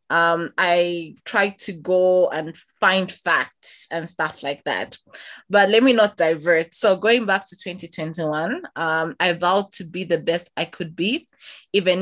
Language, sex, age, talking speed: English, female, 20-39, 165 wpm